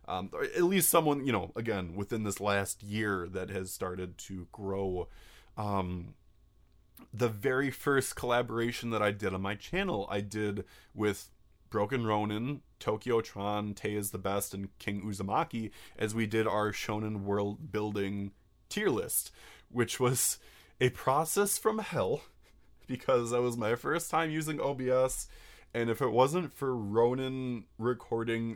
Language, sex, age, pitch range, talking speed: English, male, 20-39, 100-125 Hz, 150 wpm